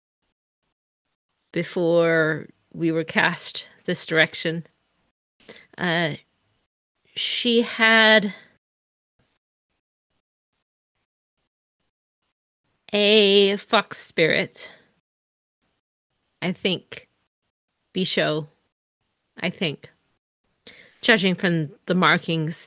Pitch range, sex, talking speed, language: 160-215 Hz, female, 55 wpm, English